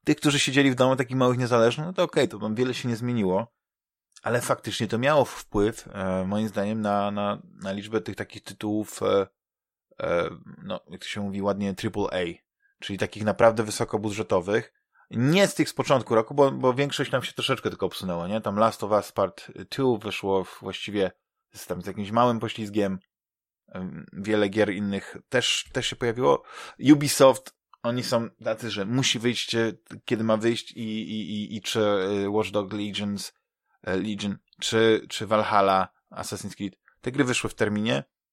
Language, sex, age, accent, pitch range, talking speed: Polish, male, 20-39, native, 105-125 Hz, 170 wpm